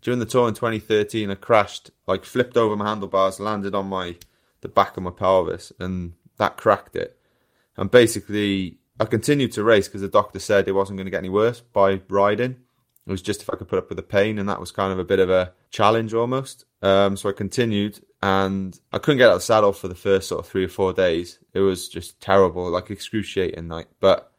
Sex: male